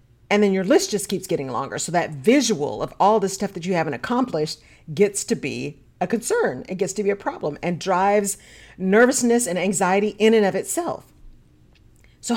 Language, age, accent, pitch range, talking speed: English, 40-59, American, 160-215 Hz, 195 wpm